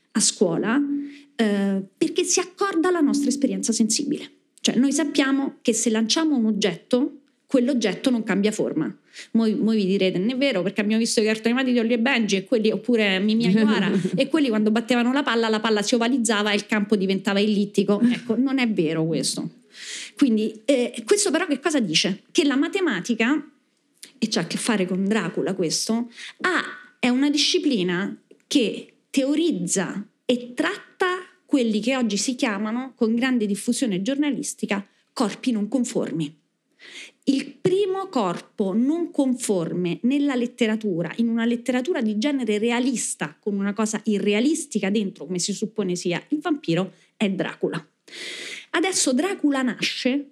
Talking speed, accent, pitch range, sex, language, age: 155 wpm, native, 210-285 Hz, female, Italian, 30-49